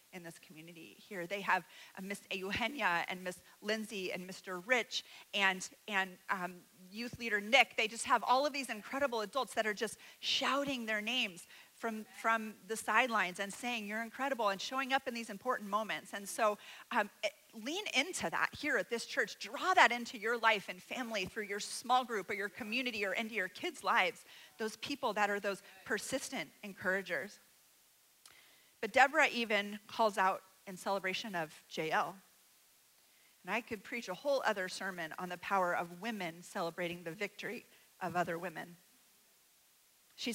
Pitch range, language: 190-235 Hz, English